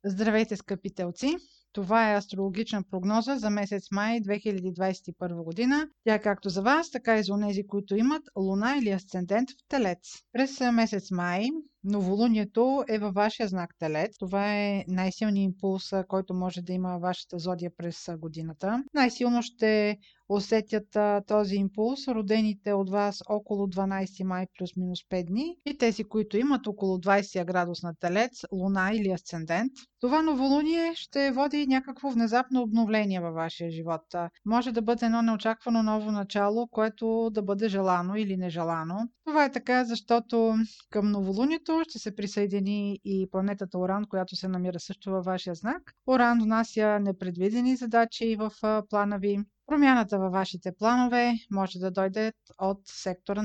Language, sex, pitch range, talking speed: Bulgarian, female, 190-230 Hz, 150 wpm